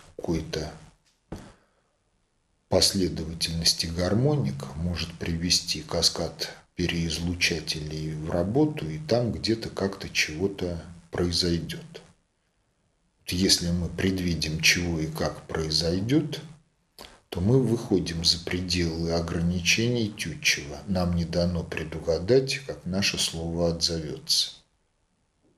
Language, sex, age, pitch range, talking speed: Russian, male, 40-59, 85-105 Hz, 85 wpm